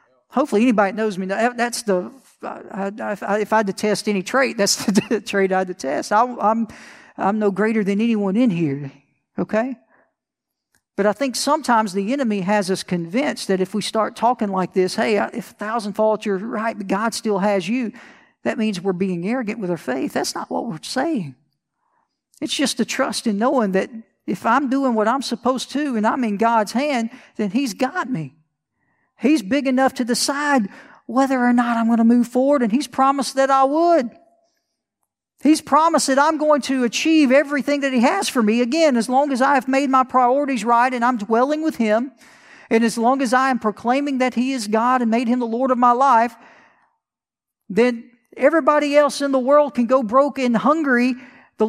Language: English